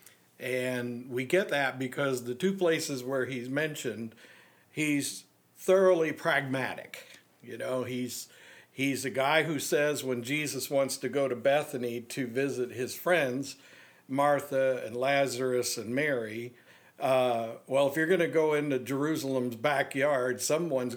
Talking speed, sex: 140 wpm, male